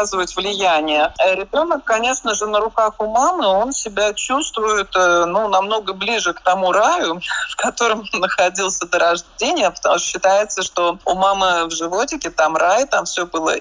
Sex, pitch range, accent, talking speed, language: male, 180-225 Hz, native, 155 wpm, Russian